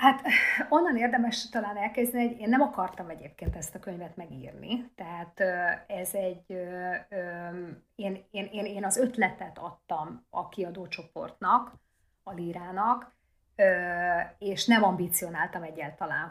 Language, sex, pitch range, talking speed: Hungarian, female, 175-225 Hz, 120 wpm